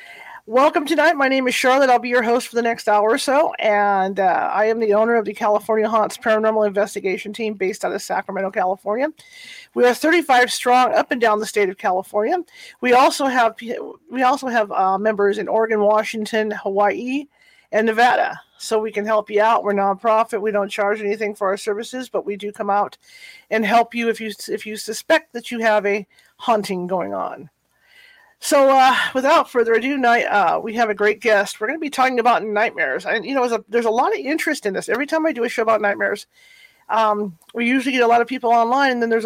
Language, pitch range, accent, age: English, 210-250 Hz, American, 40-59